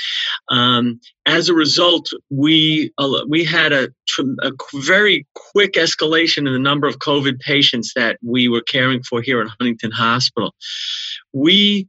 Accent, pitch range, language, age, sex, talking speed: American, 130-160 Hz, English, 40-59, male, 140 wpm